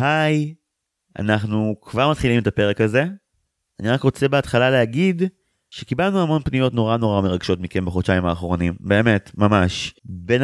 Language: Hebrew